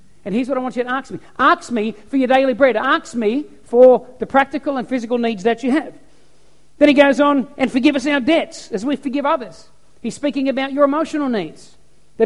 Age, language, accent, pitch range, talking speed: 50-69, English, Australian, 230-290 Hz, 225 wpm